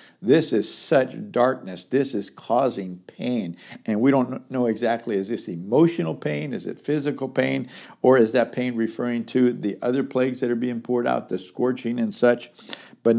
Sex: male